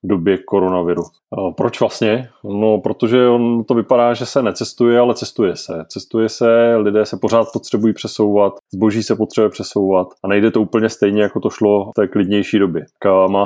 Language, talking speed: Czech, 180 wpm